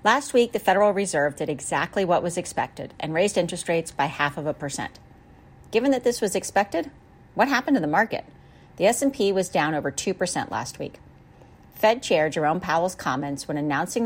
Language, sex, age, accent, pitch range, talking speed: English, female, 40-59, American, 150-205 Hz, 190 wpm